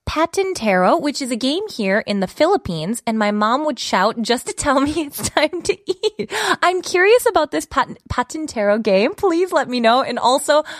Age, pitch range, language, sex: 20-39, 215-320 Hz, Korean, female